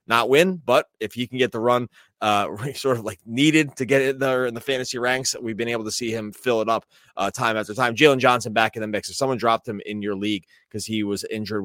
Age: 20-39